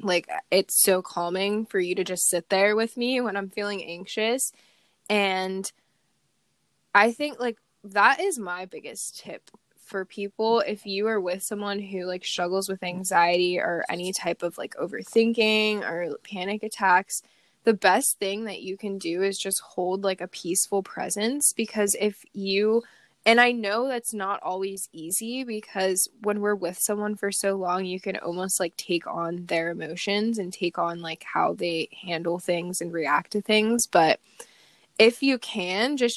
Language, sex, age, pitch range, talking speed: English, female, 10-29, 180-210 Hz, 170 wpm